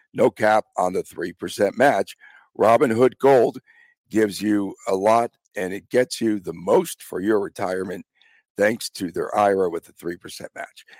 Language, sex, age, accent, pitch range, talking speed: English, male, 60-79, American, 105-135 Hz, 160 wpm